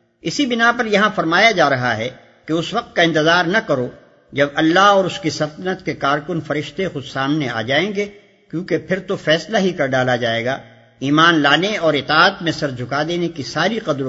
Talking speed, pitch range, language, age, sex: 210 wpm, 140-195 Hz, Urdu, 50-69, male